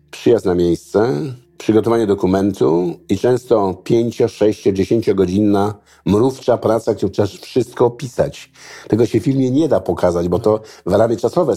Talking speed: 140 wpm